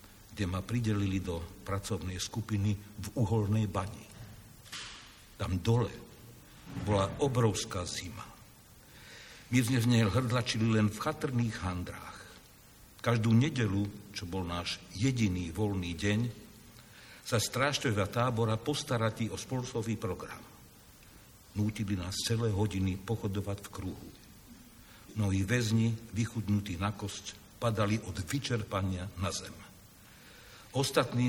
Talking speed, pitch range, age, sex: 110 wpm, 95-115 Hz, 60-79, male